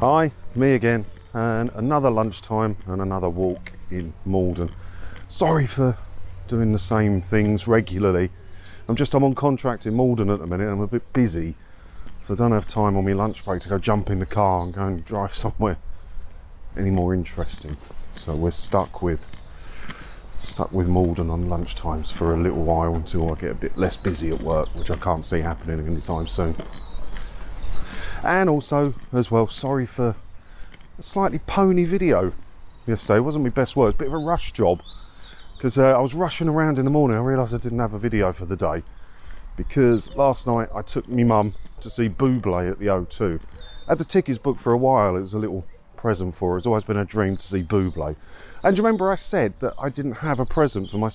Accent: British